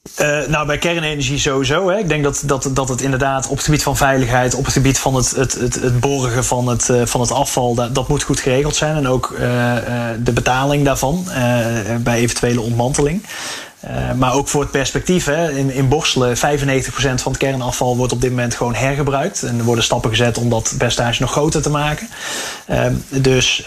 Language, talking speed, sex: Dutch, 200 wpm, male